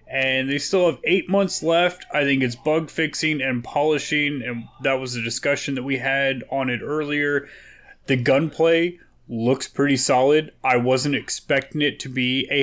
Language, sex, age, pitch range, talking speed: English, male, 30-49, 120-140 Hz, 175 wpm